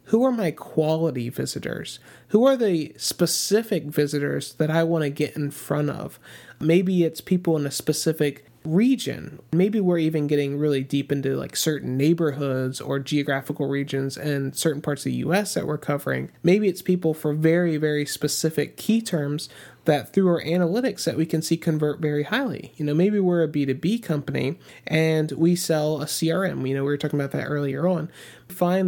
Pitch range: 145-175 Hz